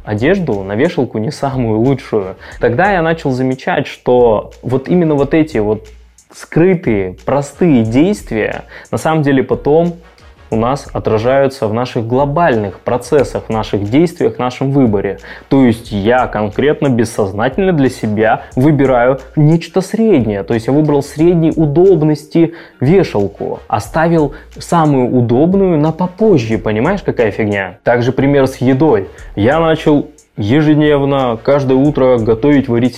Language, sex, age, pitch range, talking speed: Russian, male, 20-39, 110-150 Hz, 130 wpm